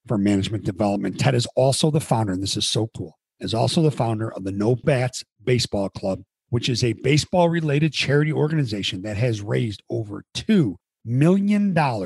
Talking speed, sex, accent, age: 175 wpm, male, American, 50-69